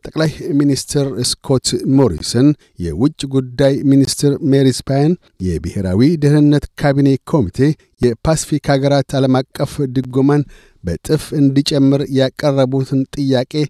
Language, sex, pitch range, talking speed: Amharic, male, 125-145 Hz, 90 wpm